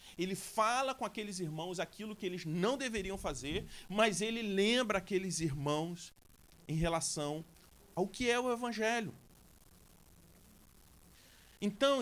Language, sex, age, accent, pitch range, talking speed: Portuguese, male, 40-59, Brazilian, 135-200 Hz, 120 wpm